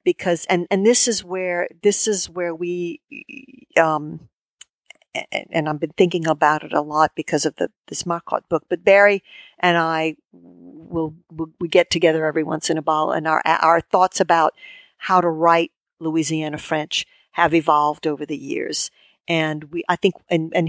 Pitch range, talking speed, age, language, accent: 160-190 Hz, 175 wpm, 50-69, English, American